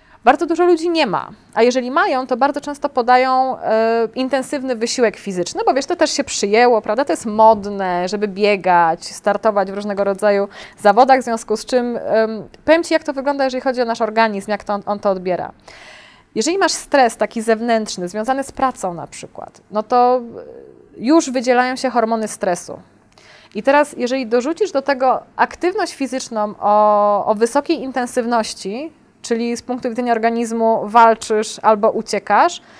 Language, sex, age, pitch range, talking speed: Polish, female, 20-39, 215-270 Hz, 165 wpm